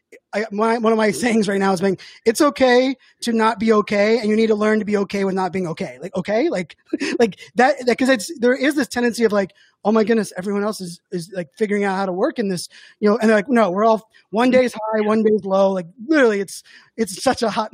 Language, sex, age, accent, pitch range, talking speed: English, male, 20-39, American, 195-230 Hz, 265 wpm